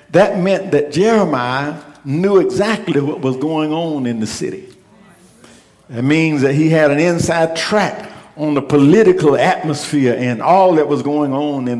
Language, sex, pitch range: English, male, 140-180 Hz